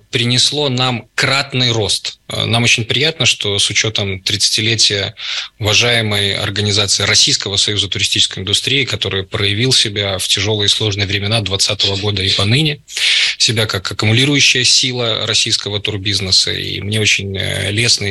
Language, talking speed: Russian, 130 wpm